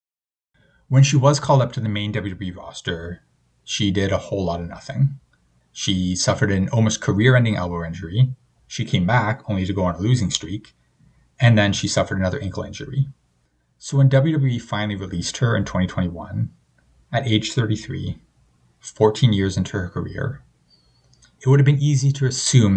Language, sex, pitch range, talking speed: English, male, 90-130 Hz, 170 wpm